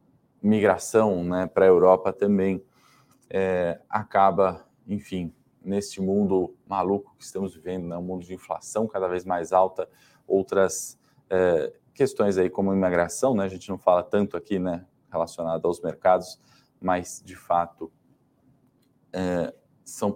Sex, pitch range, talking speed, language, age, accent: male, 90-110 Hz, 135 wpm, Portuguese, 20-39, Brazilian